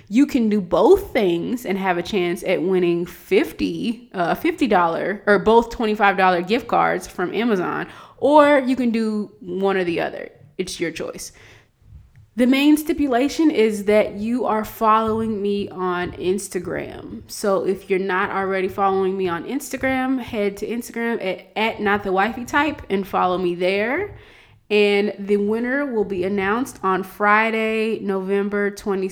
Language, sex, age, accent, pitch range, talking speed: English, female, 20-39, American, 190-235 Hz, 155 wpm